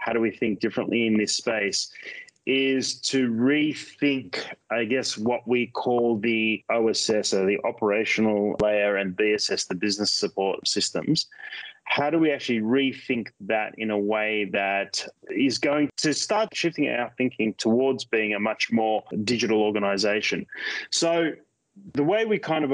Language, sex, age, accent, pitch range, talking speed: English, male, 20-39, Australian, 110-140 Hz, 155 wpm